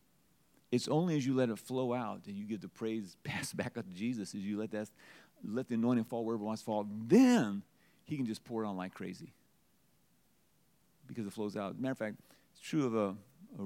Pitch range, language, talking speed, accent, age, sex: 105-150 Hz, English, 230 wpm, American, 50-69, male